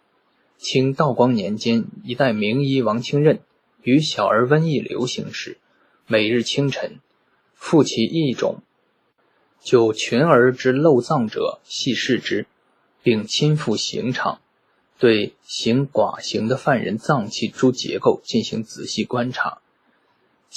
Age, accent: 20-39, native